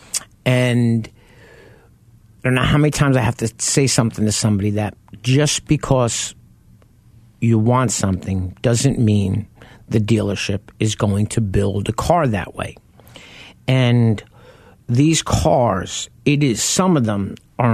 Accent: American